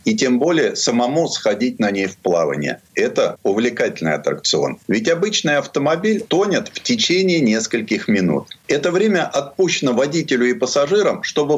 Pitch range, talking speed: 125-175 Hz, 140 wpm